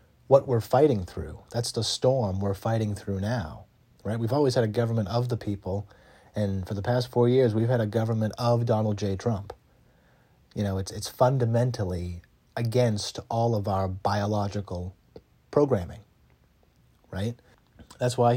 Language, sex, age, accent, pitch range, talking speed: English, male, 30-49, American, 100-130 Hz, 155 wpm